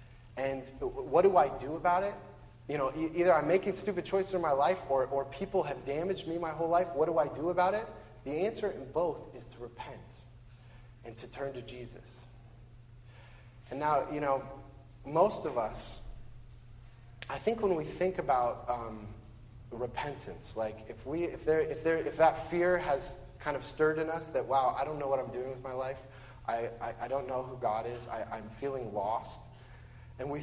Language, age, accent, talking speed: English, 20-39, American, 185 wpm